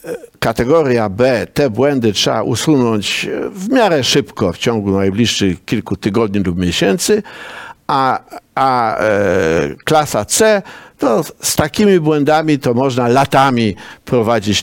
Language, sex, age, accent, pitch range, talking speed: Polish, male, 60-79, native, 120-170 Hz, 120 wpm